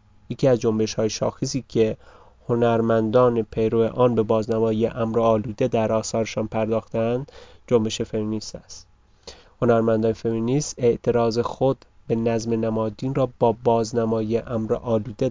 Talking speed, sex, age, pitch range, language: 120 wpm, male, 30-49, 110-120 Hz, Persian